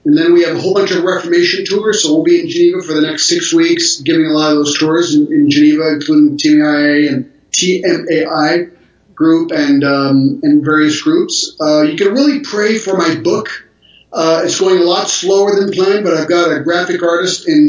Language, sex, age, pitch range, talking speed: English, male, 30-49, 155-195 Hz, 215 wpm